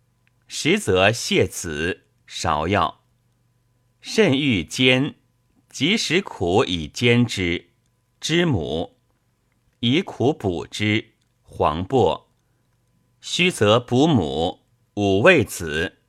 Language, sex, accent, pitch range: Chinese, male, native, 110-135 Hz